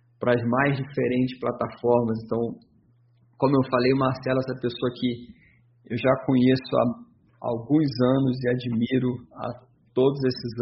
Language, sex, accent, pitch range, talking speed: Portuguese, male, Brazilian, 120-145 Hz, 145 wpm